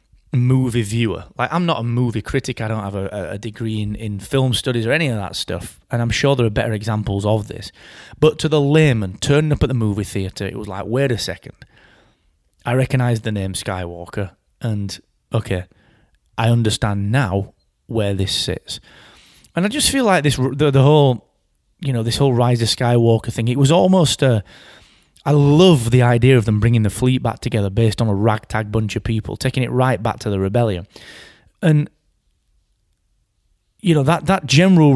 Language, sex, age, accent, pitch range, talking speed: English, male, 20-39, British, 105-135 Hz, 195 wpm